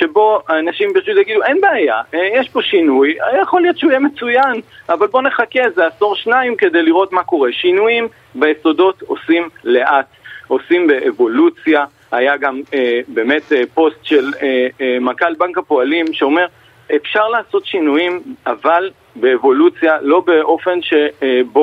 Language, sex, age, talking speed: Hebrew, male, 40-59, 140 wpm